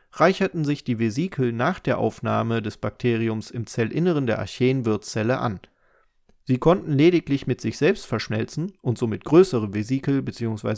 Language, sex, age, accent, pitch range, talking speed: German, male, 30-49, German, 115-150 Hz, 145 wpm